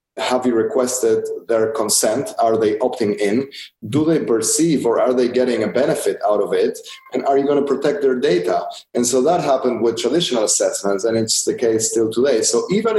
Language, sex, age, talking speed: English, male, 30-49, 205 wpm